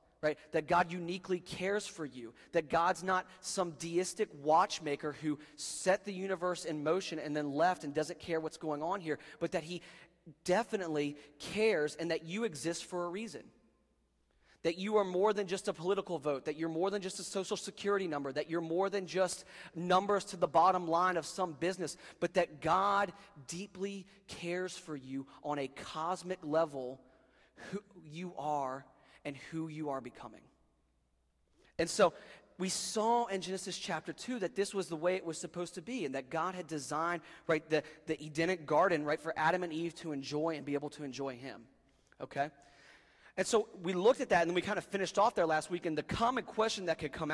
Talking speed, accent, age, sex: 195 wpm, American, 30-49, male